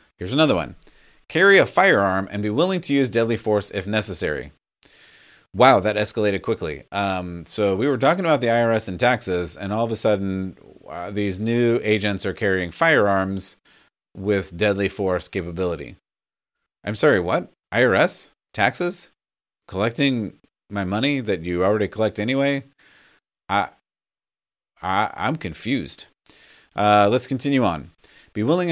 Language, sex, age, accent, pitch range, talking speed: English, male, 30-49, American, 95-130 Hz, 140 wpm